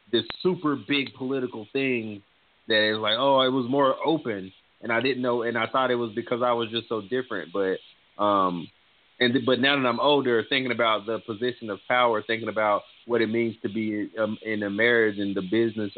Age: 30-49